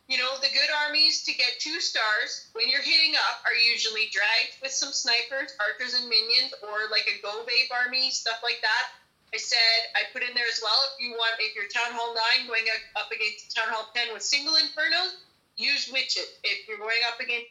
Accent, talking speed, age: American, 215 wpm, 30-49